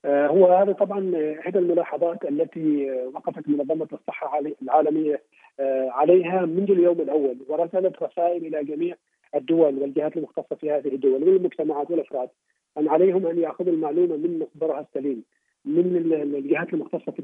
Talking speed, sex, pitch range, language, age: 130 wpm, male, 150-185 Hz, Arabic, 40-59